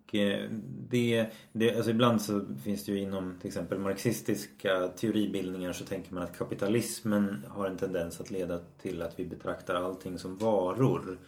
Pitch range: 90-110 Hz